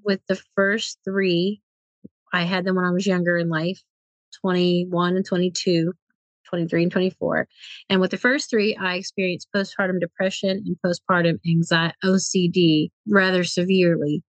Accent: American